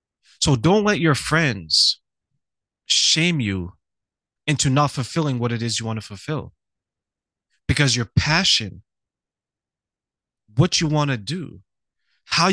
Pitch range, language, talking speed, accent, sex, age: 105-145 Hz, English, 125 wpm, American, male, 30-49